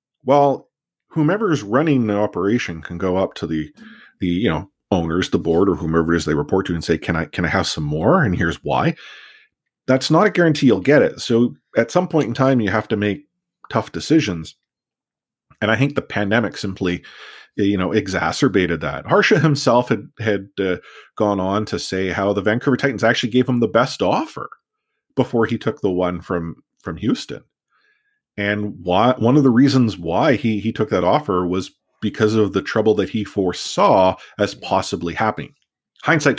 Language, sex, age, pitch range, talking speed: English, male, 40-59, 90-125 Hz, 190 wpm